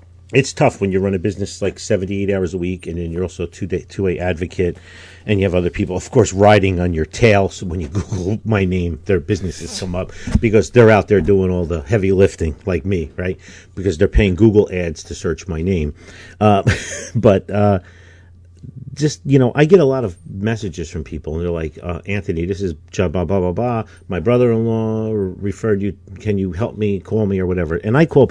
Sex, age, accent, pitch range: male, 50-69, American, 85-105 Hz